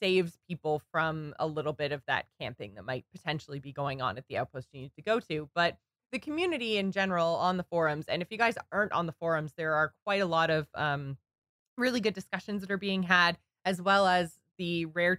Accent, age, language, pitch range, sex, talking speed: American, 20-39, English, 155-195 Hz, female, 230 wpm